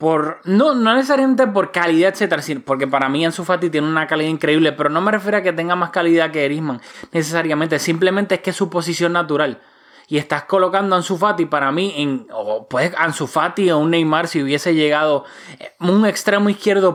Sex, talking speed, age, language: male, 200 wpm, 20-39, Spanish